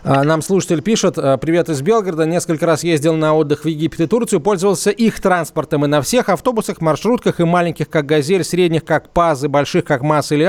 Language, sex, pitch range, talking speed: Russian, male, 155-190 Hz, 200 wpm